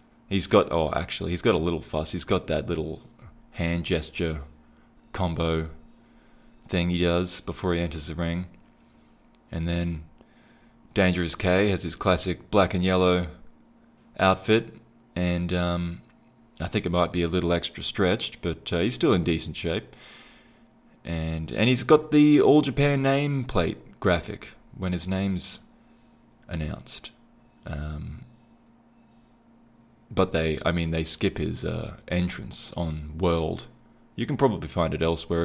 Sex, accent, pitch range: male, Australian, 80-100 Hz